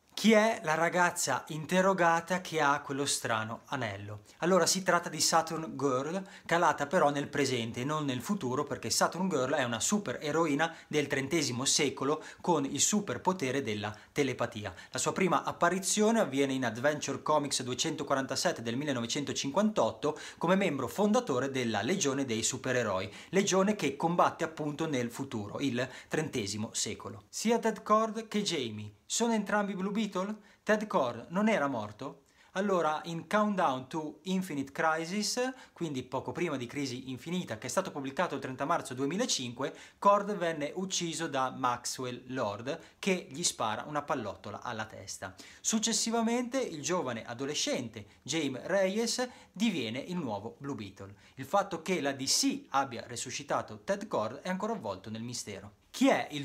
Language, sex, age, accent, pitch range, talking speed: Italian, male, 30-49, native, 125-190 Hz, 150 wpm